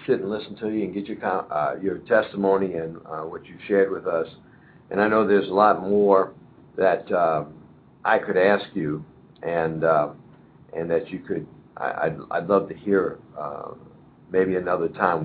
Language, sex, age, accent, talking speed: English, male, 60-79, American, 185 wpm